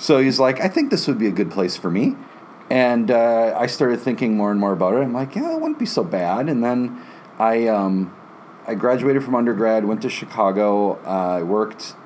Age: 40-59